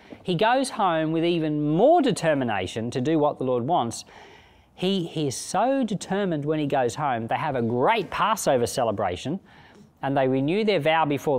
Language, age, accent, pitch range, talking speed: English, 40-59, Australian, 115-155 Hz, 180 wpm